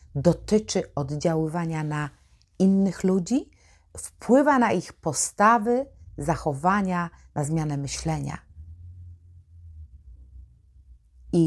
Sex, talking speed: female, 75 wpm